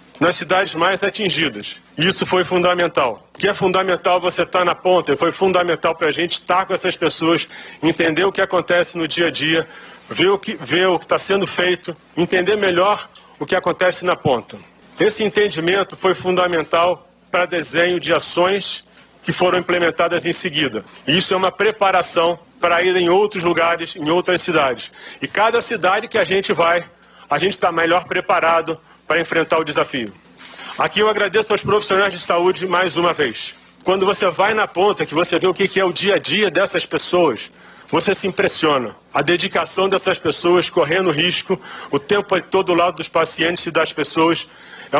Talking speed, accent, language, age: 180 wpm, Brazilian, Portuguese, 40-59